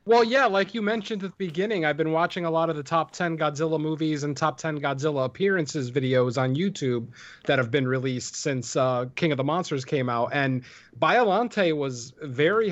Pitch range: 135-170 Hz